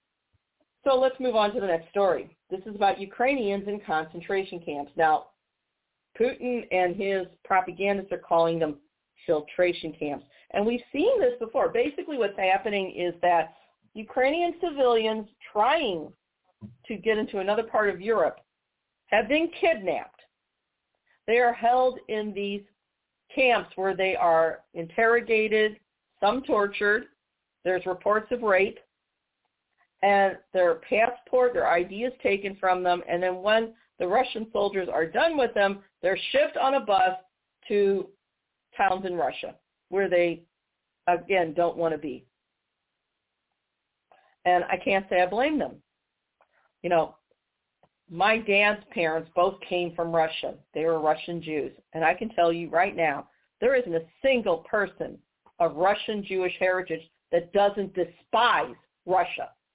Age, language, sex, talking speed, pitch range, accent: 40-59, English, female, 140 wpm, 175-225 Hz, American